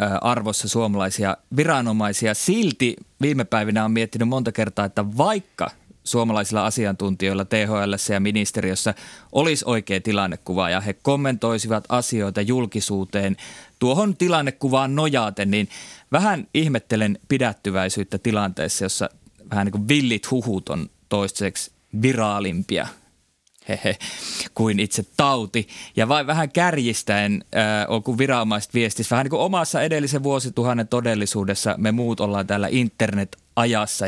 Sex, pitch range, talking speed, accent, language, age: male, 100-120 Hz, 115 wpm, native, Finnish, 20-39